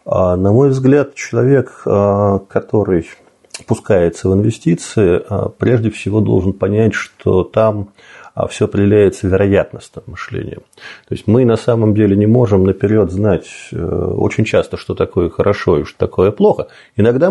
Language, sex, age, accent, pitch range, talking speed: Russian, male, 30-49, native, 100-125 Hz, 135 wpm